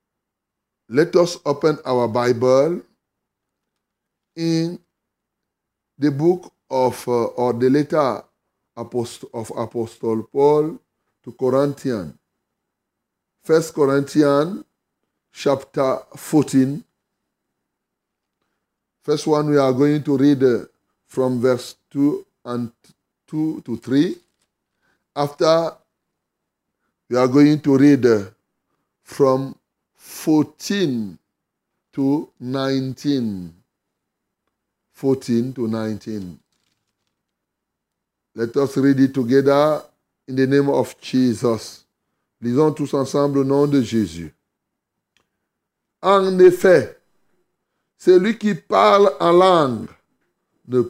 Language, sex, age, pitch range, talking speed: French, male, 30-49, 125-155 Hz, 90 wpm